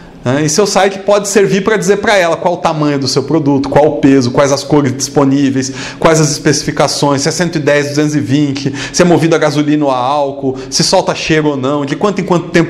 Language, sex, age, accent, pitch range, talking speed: Portuguese, male, 40-59, Brazilian, 140-180 Hz, 220 wpm